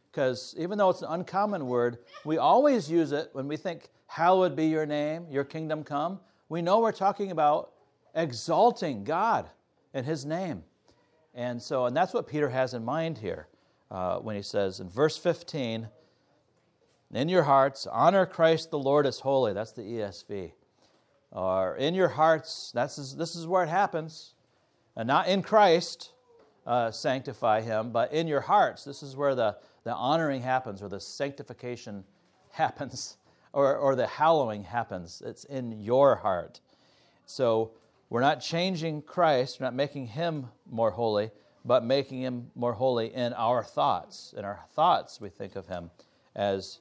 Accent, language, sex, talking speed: American, English, male, 165 wpm